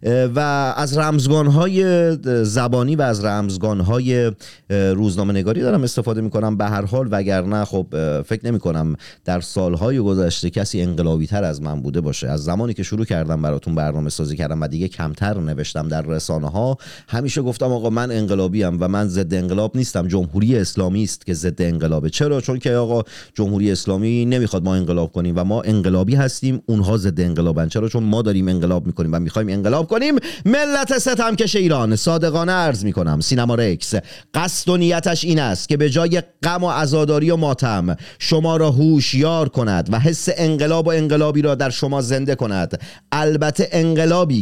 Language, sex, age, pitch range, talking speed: Persian, male, 40-59, 95-150 Hz, 175 wpm